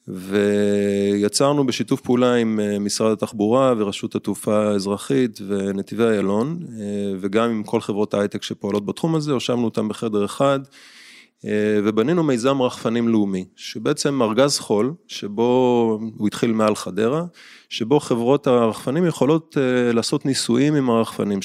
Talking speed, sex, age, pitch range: 120 wpm, male, 20-39, 105-130 Hz